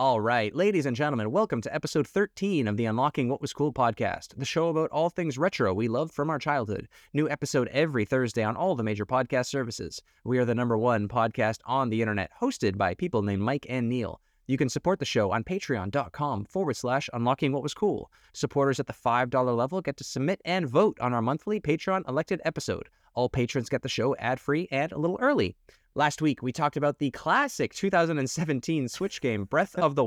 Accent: American